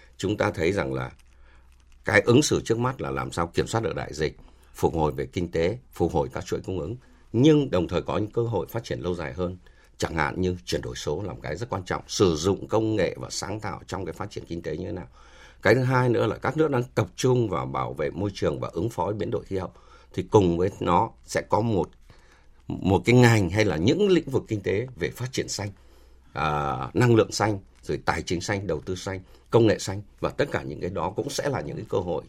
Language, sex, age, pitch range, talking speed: Vietnamese, male, 60-79, 80-110 Hz, 260 wpm